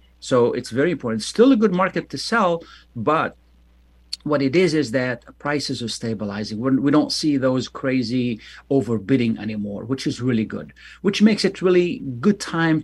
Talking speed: 175 wpm